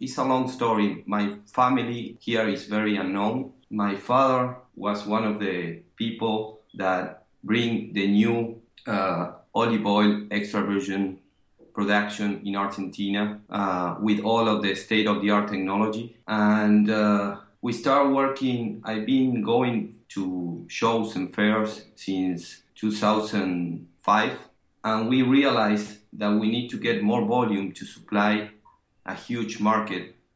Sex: male